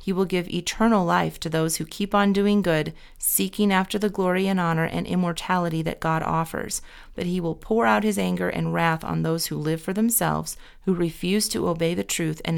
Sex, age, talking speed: female, 30-49, 215 wpm